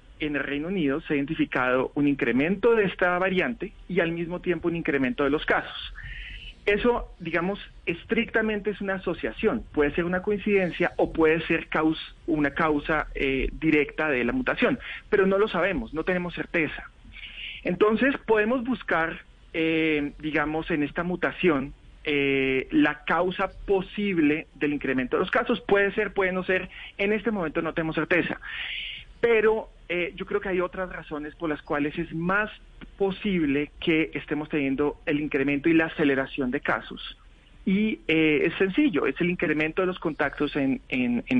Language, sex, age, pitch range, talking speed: Spanish, male, 40-59, 150-195 Hz, 165 wpm